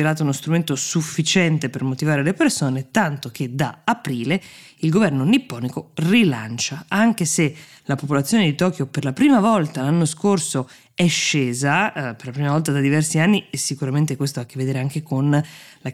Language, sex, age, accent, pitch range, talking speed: Italian, female, 20-39, native, 135-175 Hz, 175 wpm